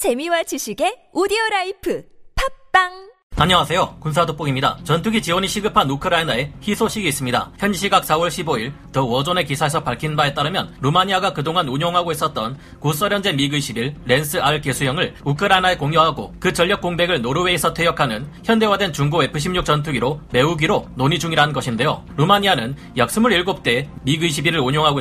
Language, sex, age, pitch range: Korean, male, 30-49, 140-185 Hz